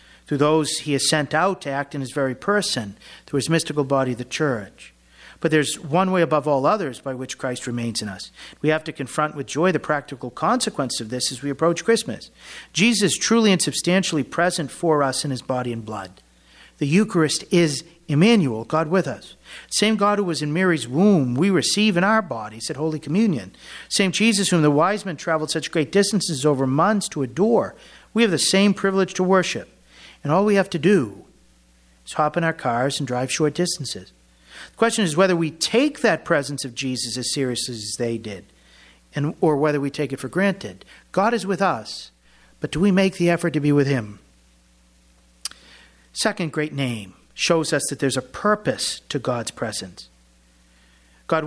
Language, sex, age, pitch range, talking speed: English, male, 50-69, 125-175 Hz, 195 wpm